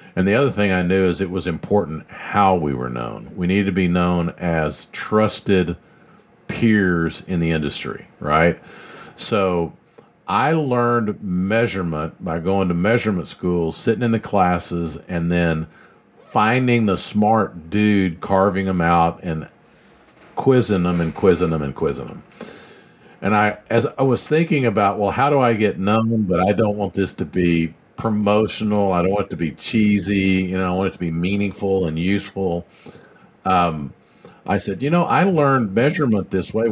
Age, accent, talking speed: 50-69, American, 170 wpm